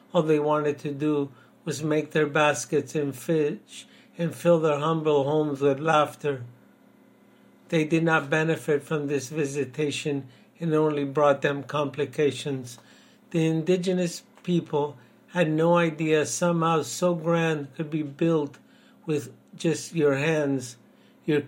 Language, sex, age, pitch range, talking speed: English, male, 60-79, 145-170 Hz, 135 wpm